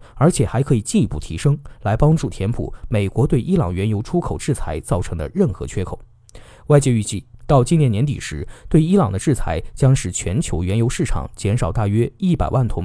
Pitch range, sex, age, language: 100-145 Hz, male, 20-39, Chinese